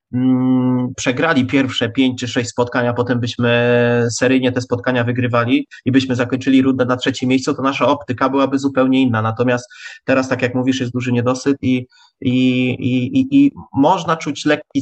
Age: 20-39